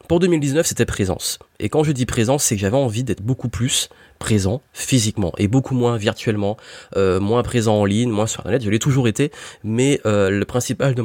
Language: French